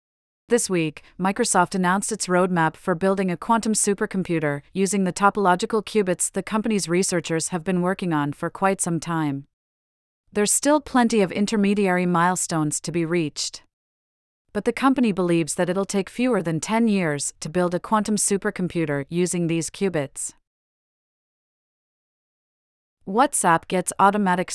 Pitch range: 165-200 Hz